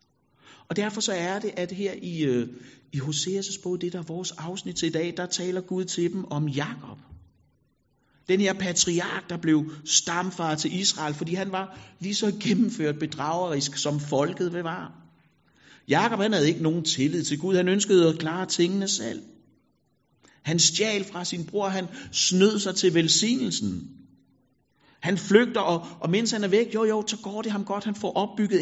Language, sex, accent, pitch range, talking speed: Danish, male, native, 145-195 Hz, 180 wpm